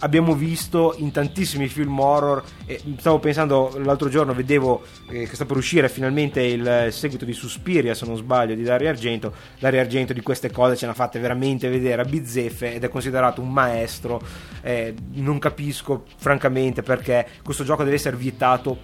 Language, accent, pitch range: Italian, native, 120-145 Hz